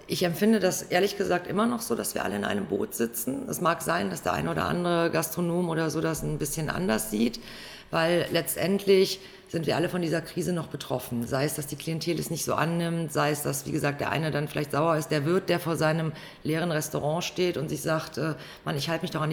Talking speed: 240 wpm